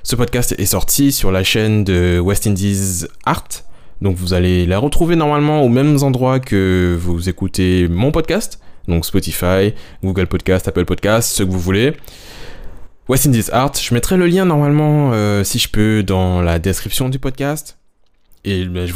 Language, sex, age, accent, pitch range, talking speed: French, male, 20-39, French, 95-130 Hz, 170 wpm